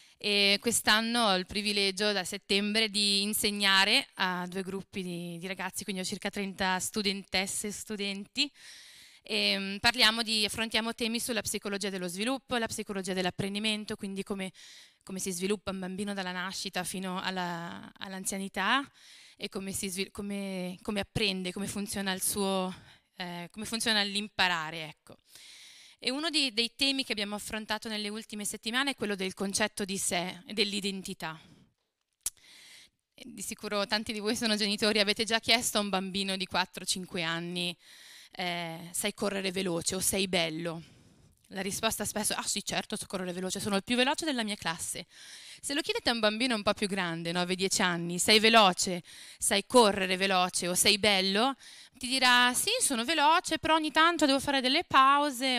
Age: 20-39